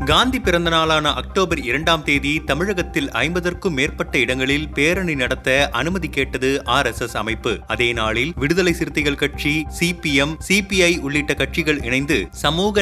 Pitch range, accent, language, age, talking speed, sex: 145-175 Hz, native, Tamil, 30-49, 125 wpm, male